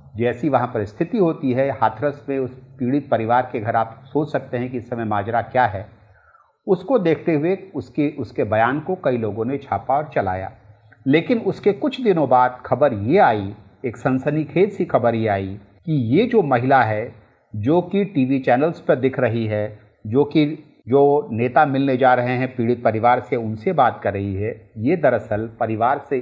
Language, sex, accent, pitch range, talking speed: Hindi, male, native, 110-145 Hz, 190 wpm